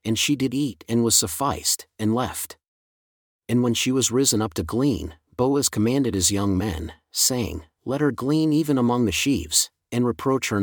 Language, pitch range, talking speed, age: English, 95-130 Hz, 185 wpm, 40-59